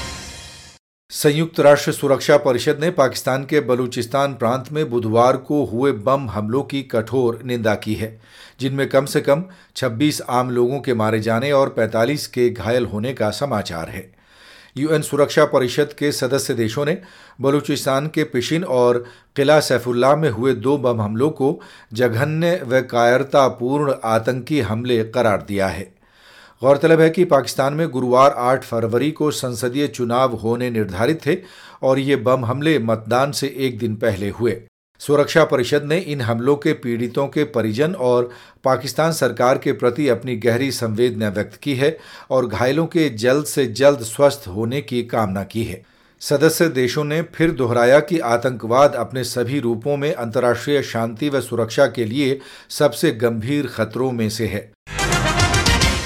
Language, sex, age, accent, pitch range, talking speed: Hindi, male, 40-59, native, 115-145 Hz, 155 wpm